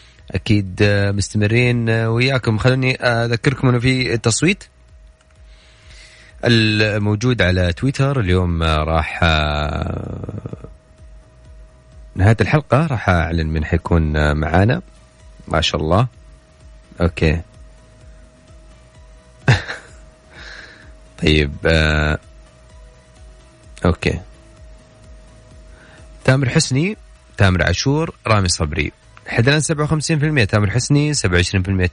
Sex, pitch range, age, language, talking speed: male, 80-120 Hz, 30-49, Arabic, 70 wpm